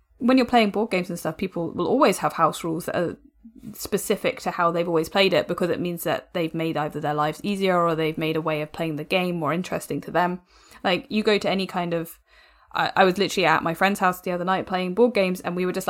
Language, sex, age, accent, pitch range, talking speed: English, female, 20-39, British, 165-210 Hz, 260 wpm